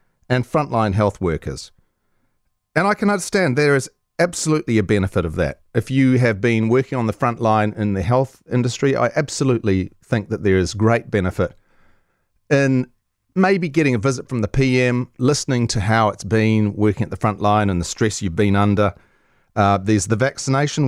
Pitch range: 100-135 Hz